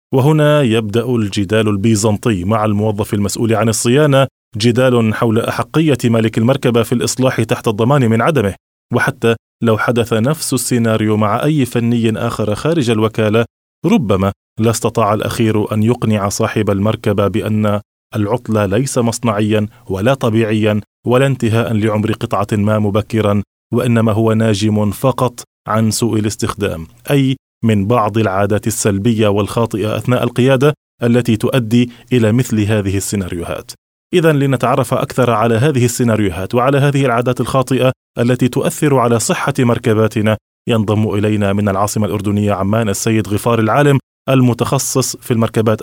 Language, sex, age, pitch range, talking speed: Arabic, male, 20-39, 105-125 Hz, 130 wpm